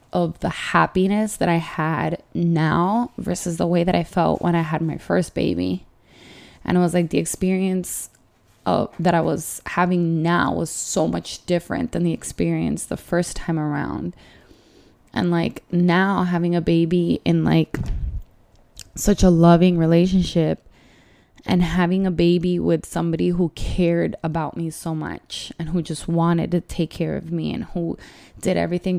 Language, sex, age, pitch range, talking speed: English, female, 20-39, 165-185 Hz, 165 wpm